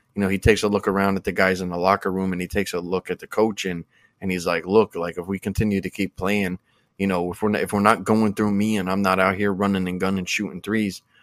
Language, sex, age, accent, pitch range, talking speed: English, male, 20-39, American, 95-105 Hz, 300 wpm